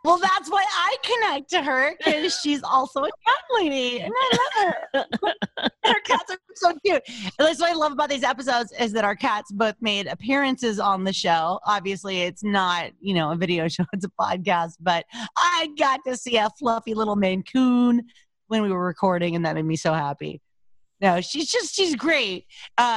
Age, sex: 30-49, female